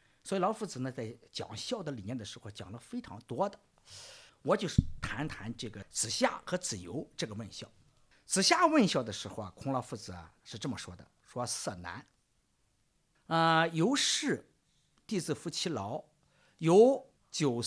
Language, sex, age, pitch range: Chinese, male, 50-69, 115-175 Hz